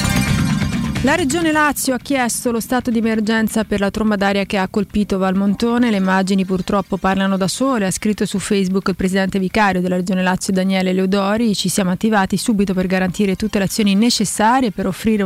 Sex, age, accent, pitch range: female, 30-49, native, 190-215 Hz